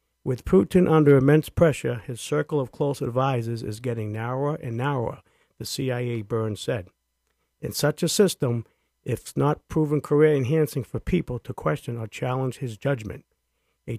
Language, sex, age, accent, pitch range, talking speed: English, male, 50-69, American, 115-150 Hz, 155 wpm